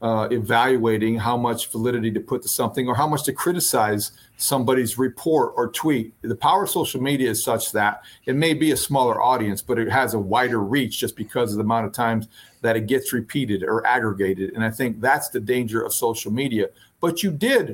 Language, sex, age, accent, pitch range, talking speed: English, male, 50-69, American, 130-185 Hz, 215 wpm